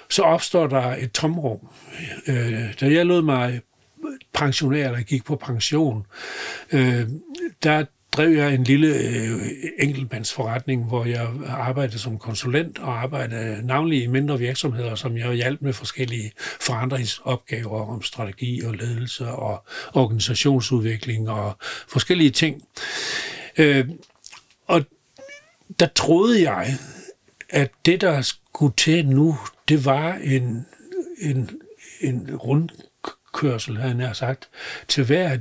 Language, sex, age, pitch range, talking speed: Danish, male, 60-79, 120-150 Hz, 110 wpm